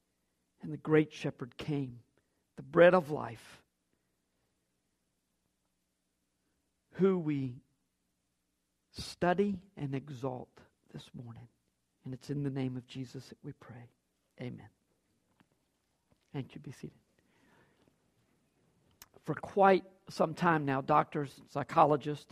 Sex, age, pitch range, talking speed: male, 50-69, 140-215 Hz, 105 wpm